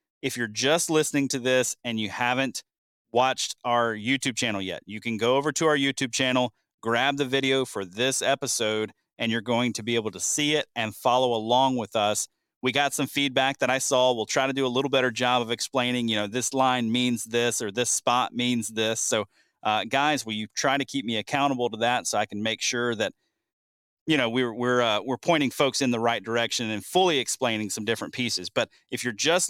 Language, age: English, 30-49